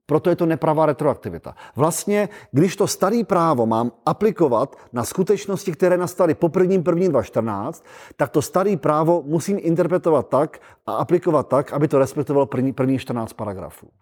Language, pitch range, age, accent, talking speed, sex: Czech, 140-175 Hz, 40-59, native, 160 wpm, male